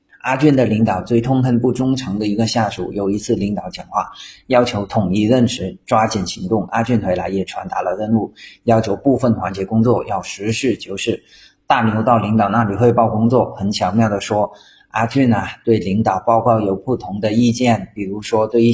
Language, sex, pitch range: Chinese, male, 100-120 Hz